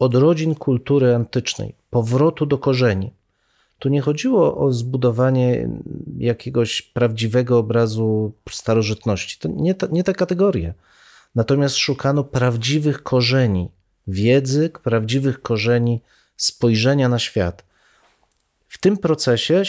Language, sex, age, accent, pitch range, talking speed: Polish, male, 40-59, native, 120-155 Hz, 105 wpm